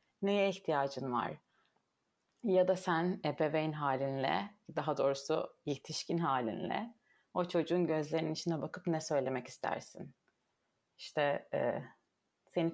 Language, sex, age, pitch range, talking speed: Turkish, female, 30-49, 160-200 Hz, 110 wpm